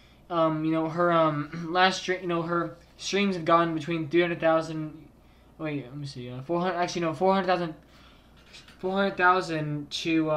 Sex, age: male, 20-39